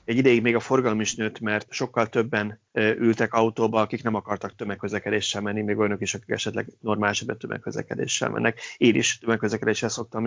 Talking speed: 170 wpm